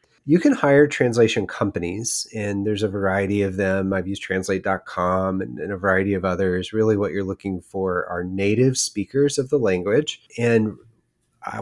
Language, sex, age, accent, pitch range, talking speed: English, male, 30-49, American, 95-115 Hz, 170 wpm